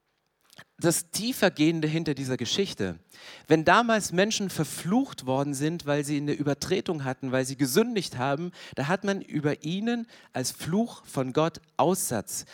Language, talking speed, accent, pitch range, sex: German, 145 wpm, German, 145-190 Hz, male